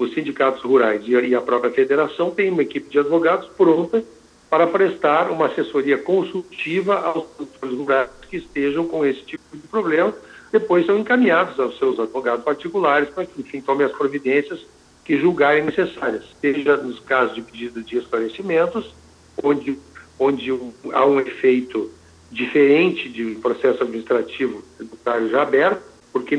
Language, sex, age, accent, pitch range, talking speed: Portuguese, male, 60-79, Brazilian, 135-190 Hz, 145 wpm